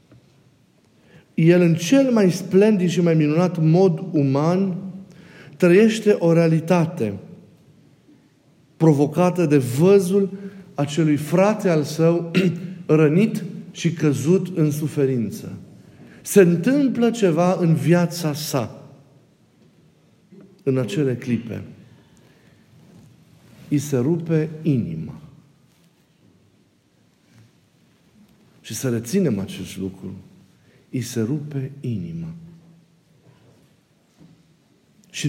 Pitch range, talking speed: 150-195 Hz, 80 wpm